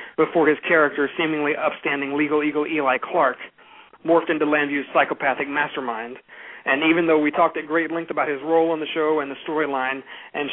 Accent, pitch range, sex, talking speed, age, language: American, 135-155 Hz, male, 180 wpm, 40-59, English